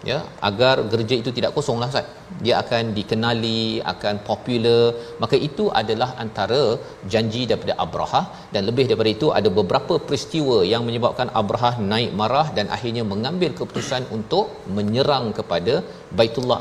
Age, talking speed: 40-59, 140 wpm